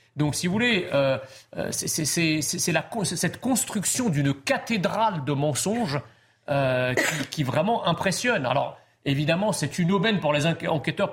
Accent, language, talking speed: French, French, 135 wpm